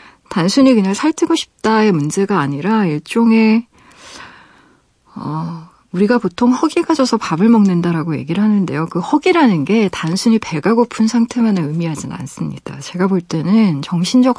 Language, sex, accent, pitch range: Korean, female, native, 165-235 Hz